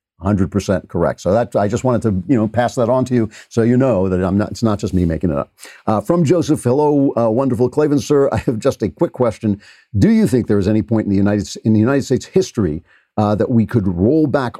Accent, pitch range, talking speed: American, 100-120 Hz, 265 wpm